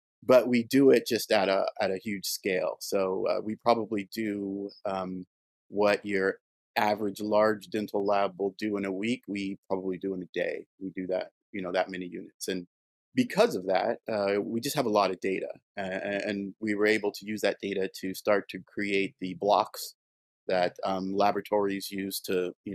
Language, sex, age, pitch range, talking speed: English, male, 30-49, 95-105 Hz, 200 wpm